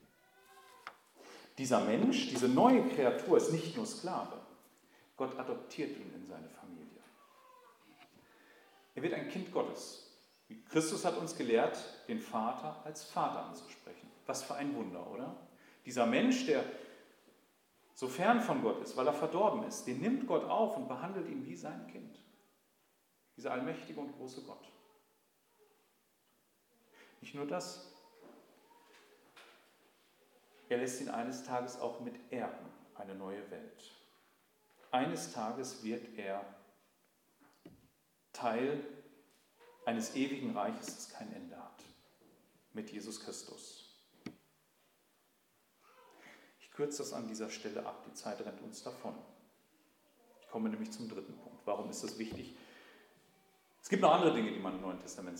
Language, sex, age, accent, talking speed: German, male, 40-59, German, 130 wpm